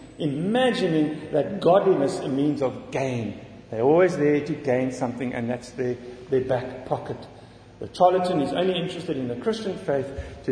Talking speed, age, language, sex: 170 wpm, 50-69, English, male